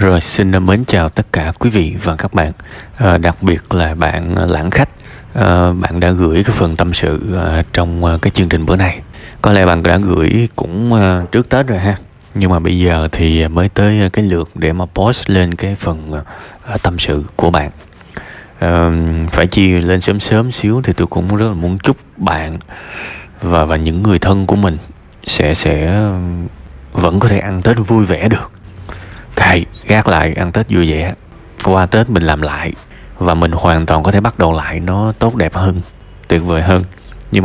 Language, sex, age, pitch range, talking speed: Vietnamese, male, 20-39, 85-105 Hz, 200 wpm